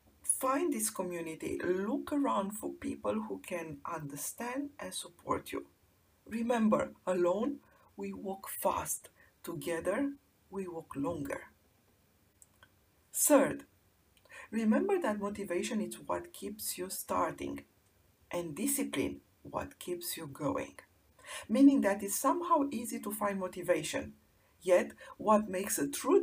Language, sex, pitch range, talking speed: English, female, 175-260 Hz, 115 wpm